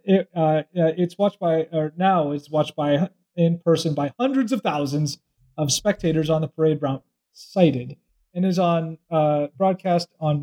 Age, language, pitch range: 30-49, English, 155-205 Hz